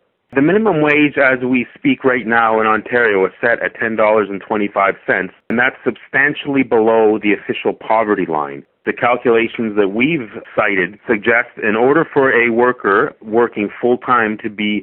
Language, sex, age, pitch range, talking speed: English, male, 40-59, 100-120 Hz, 155 wpm